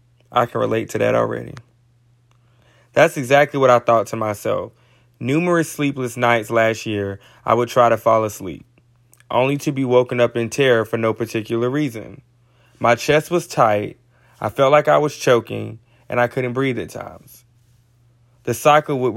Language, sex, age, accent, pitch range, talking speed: English, male, 20-39, American, 120-145 Hz, 170 wpm